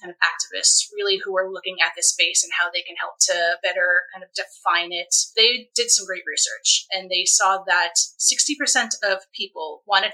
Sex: female